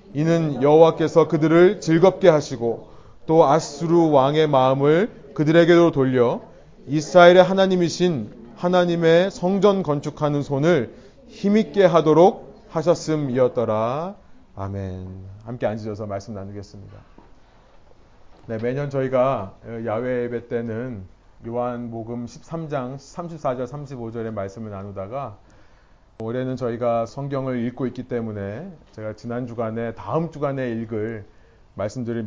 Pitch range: 110-155 Hz